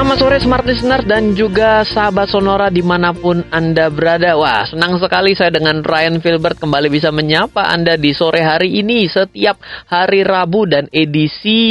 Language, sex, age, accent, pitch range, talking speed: Indonesian, male, 20-39, native, 115-165 Hz, 160 wpm